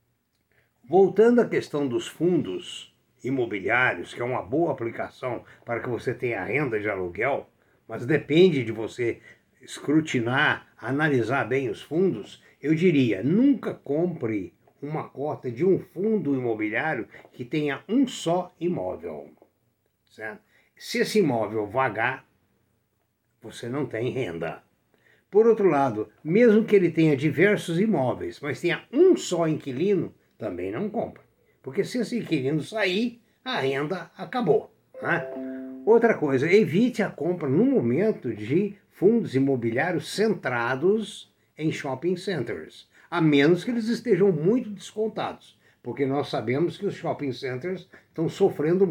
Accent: Brazilian